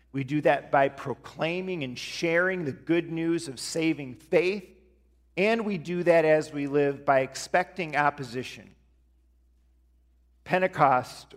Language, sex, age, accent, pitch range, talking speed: English, male, 40-59, American, 125-165 Hz, 125 wpm